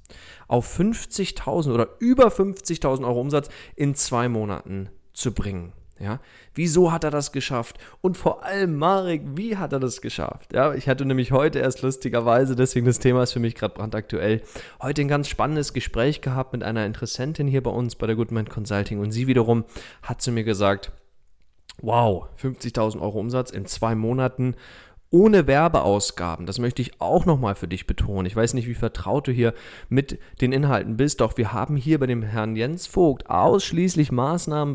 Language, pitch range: German, 110-145 Hz